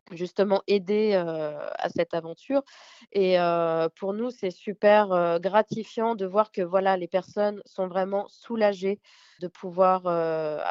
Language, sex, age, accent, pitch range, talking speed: French, female, 20-39, French, 185-210 Hz, 145 wpm